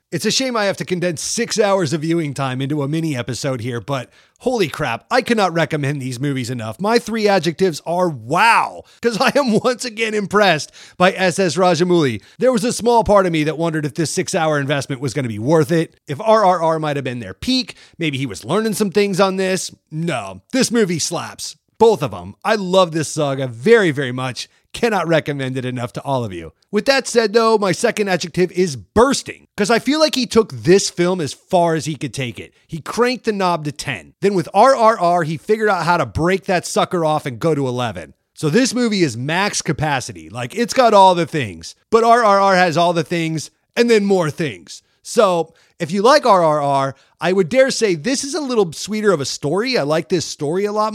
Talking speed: 220 wpm